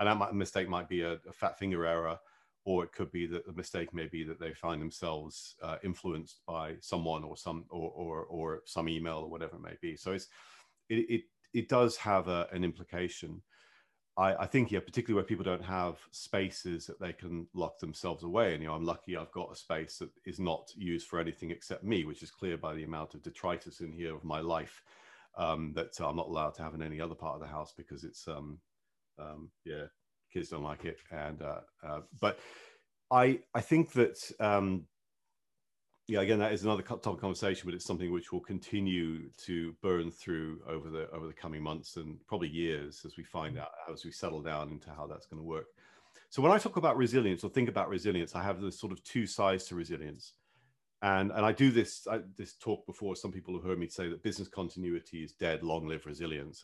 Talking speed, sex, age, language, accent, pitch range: 220 wpm, male, 40-59, English, British, 80-100 Hz